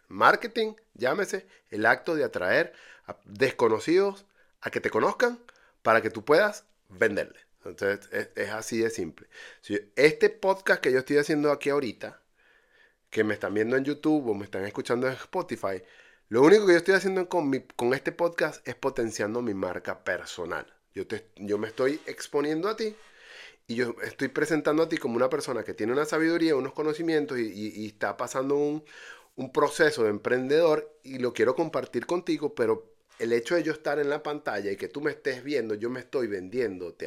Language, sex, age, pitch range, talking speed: Spanish, male, 30-49, 130-210 Hz, 190 wpm